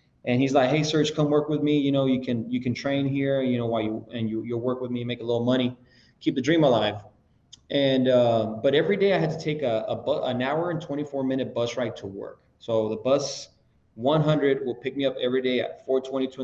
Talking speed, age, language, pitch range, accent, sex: 255 wpm, 20-39, English, 115-140 Hz, American, male